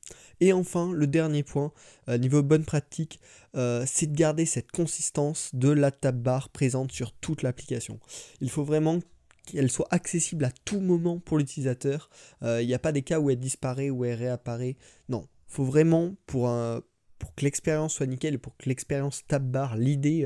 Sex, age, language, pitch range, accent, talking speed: male, 20-39, French, 125-155 Hz, French, 185 wpm